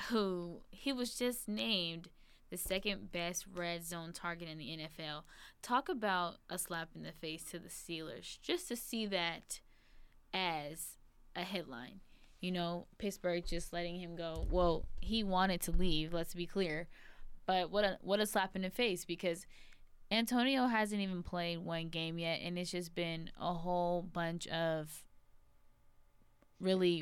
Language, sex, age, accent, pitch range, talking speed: English, female, 10-29, American, 165-190 Hz, 160 wpm